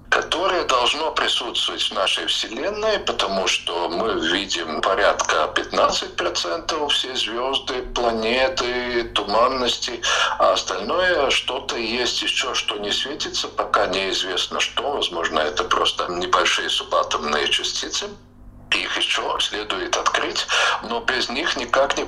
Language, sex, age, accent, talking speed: Russian, male, 50-69, native, 115 wpm